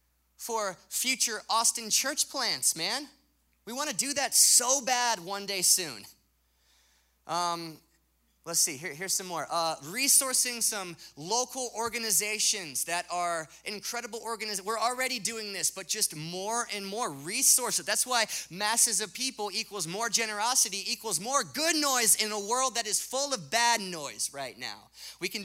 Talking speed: 155 wpm